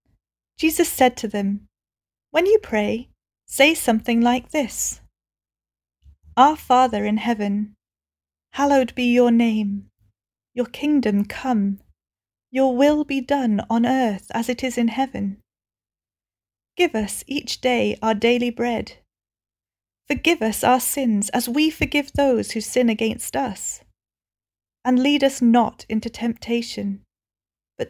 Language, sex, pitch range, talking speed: English, female, 205-270 Hz, 125 wpm